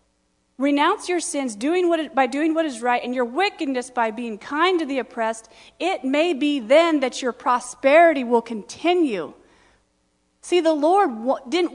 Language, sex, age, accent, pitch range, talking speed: English, female, 40-59, American, 240-310 Hz, 155 wpm